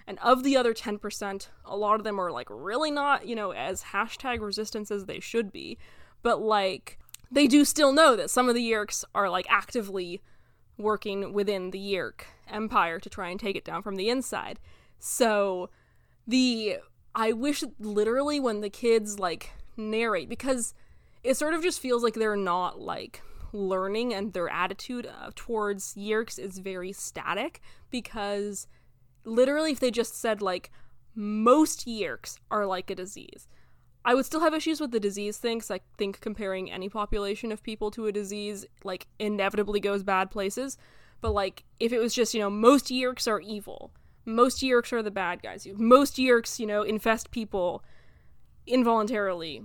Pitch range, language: 200-240 Hz, English